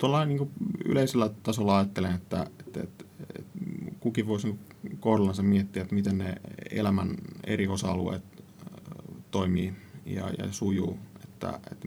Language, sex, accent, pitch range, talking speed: Finnish, male, native, 95-110 Hz, 125 wpm